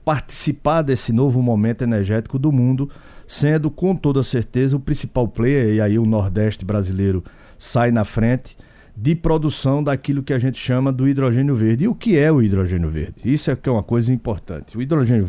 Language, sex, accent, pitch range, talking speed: Portuguese, male, Brazilian, 105-135 Hz, 185 wpm